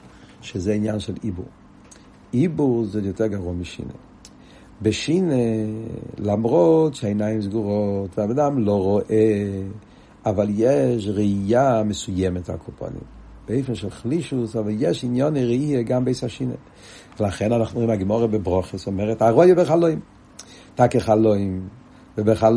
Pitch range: 110-140 Hz